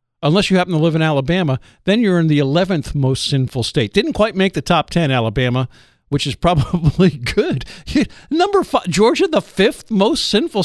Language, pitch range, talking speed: English, 155-250 Hz, 185 wpm